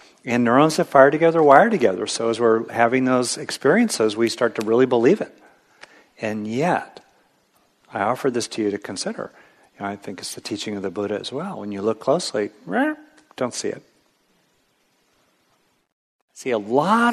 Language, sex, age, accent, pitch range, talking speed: English, male, 50-69, American, 105-150 Hz, 170 wpm